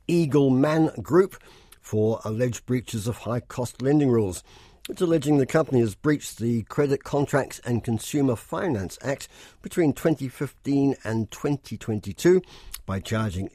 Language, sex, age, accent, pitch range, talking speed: English, male, 50-69, British, 110-145 Hz, 135 wpm